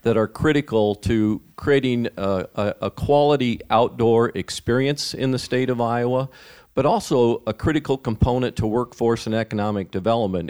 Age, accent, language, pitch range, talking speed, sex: 50-69, American, English, 95-115 Hz, 145 wpm, male